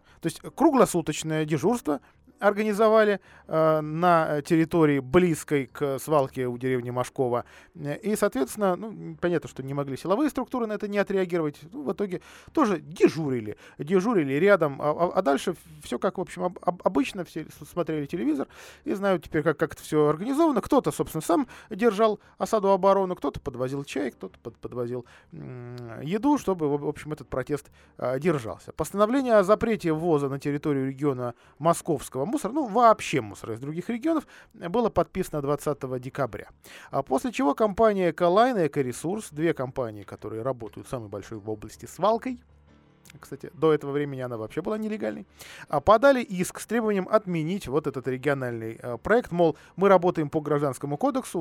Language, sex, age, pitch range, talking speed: Russian, male, 20-39, 130-190 Hz, 155 wpm